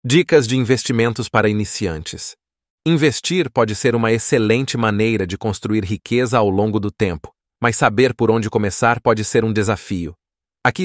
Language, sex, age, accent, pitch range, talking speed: Portuguese, male, 30-49, Brazilian, 105-125 Hz, 155 wpm